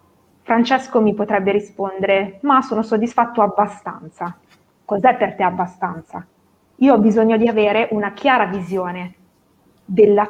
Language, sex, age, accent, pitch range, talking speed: Italian, female, 20-39, native, 200-240 Hz, 120 wpm